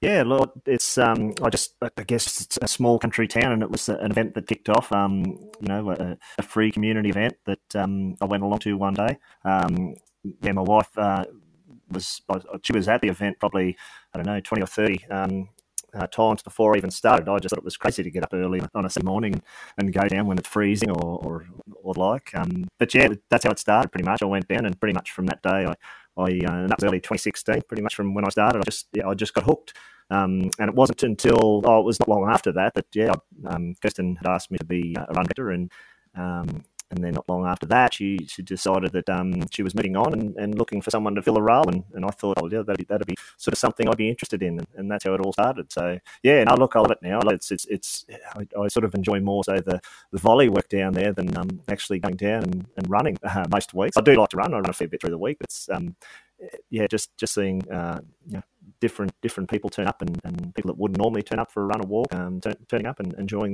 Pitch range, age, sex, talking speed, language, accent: 95-110 Hz, 30-49, male, 265 wpm, English, Australian